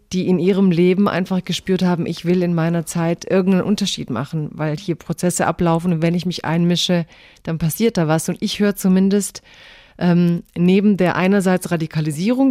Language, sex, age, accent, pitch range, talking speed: German, female, 40-59, German, 170-195 Hz, 180 wpm